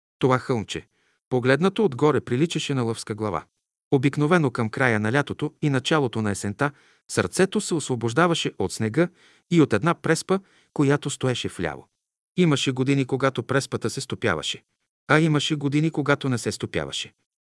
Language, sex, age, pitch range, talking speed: Bulgarian, male, 50-69, 115-160 Hz, 145 wpm